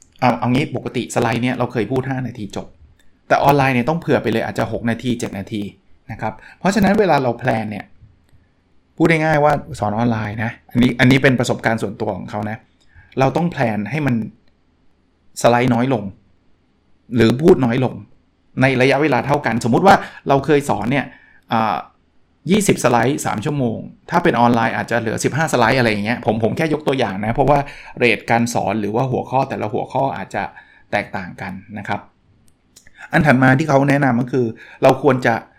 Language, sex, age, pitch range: Thai, male, 20-39, 110-140 Hz